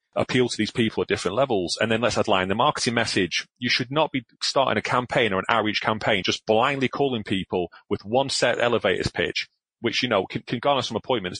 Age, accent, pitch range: 30-49, British, 100-125 Hz